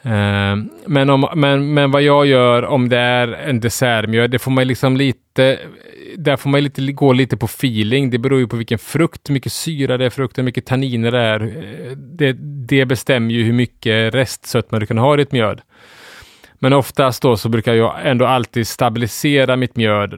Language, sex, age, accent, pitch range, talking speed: Swedish, male, 30-49, Norwegian, 110-135 Hz, 185 wpm